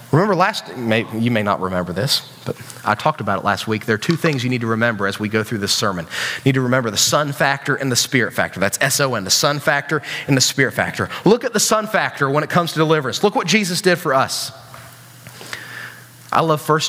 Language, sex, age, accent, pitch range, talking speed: English, male, 30-49, American, 125-165 Hz, 245 wpm